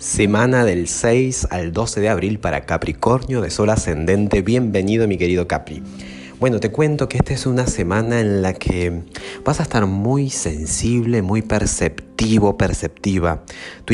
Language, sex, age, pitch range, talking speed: Spanish, male, 30-49, 90-115 Hz, 155 wpm